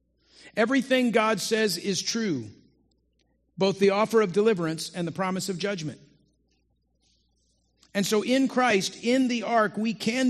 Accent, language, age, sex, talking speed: American, English, 50-69, male, 140 wpm